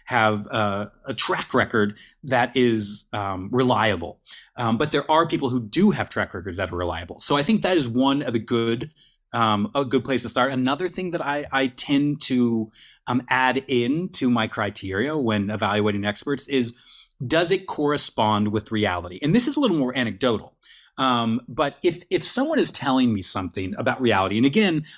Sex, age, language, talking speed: male, 30-49, English, 190 wpm